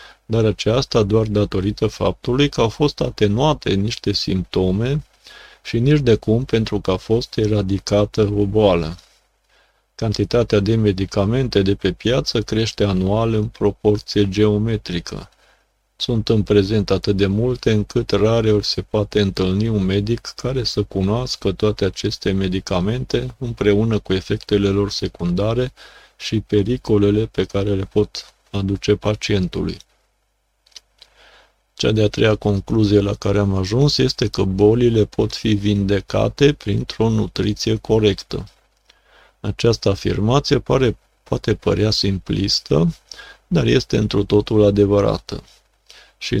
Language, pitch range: Romanian, 100-115 Hz